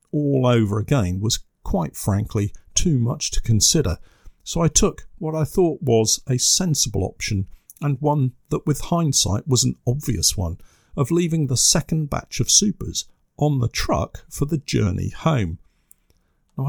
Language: English